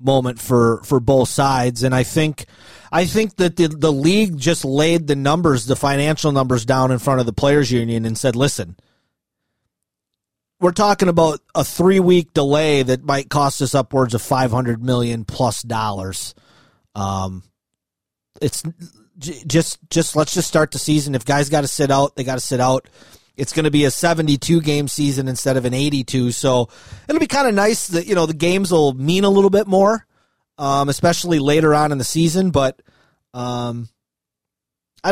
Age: 30-49